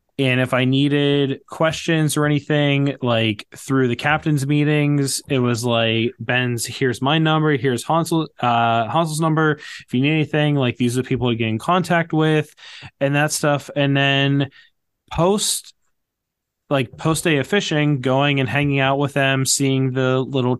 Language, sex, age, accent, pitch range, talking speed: English, male, 20-39, American, 130-150 Hz, 170 wpm